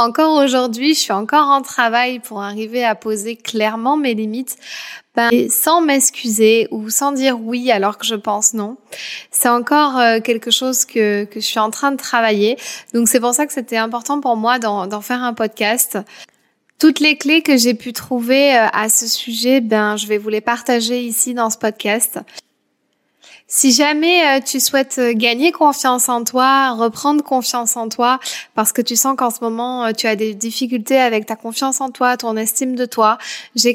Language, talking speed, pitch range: French, 185 wpm, 225-265 Hz